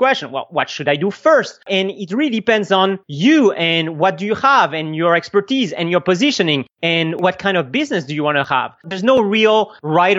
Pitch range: 175-220 Hz